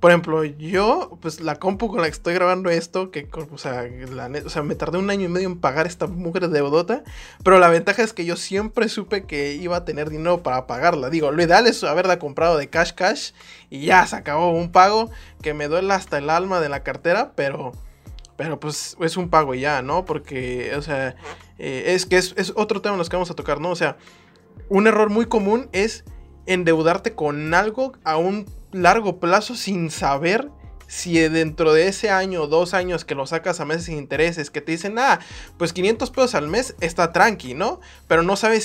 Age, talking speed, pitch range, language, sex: 20-39, 220 wpm, 150-185 Hz, Spanish, male